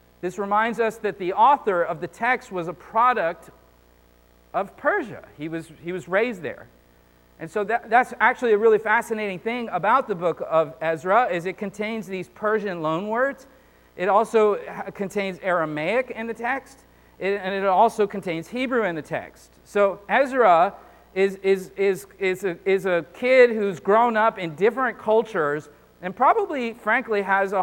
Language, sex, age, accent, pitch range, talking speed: English, male, 40-59, American, 170-215 Hz, 160 wpm